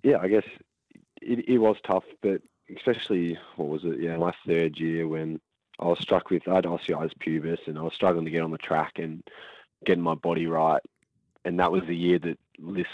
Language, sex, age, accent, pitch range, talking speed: English, male, 20-39, Australian, 80-85 Hz, 210 wpm